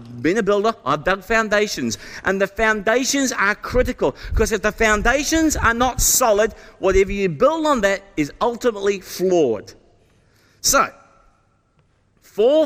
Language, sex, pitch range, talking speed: English, male, 170-250 Hz, 135 wpm